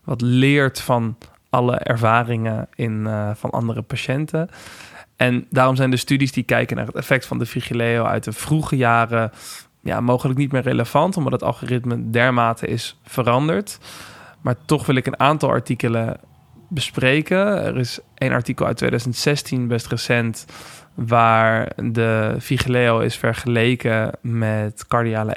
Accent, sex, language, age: Dutch, male, Dutch, 20-39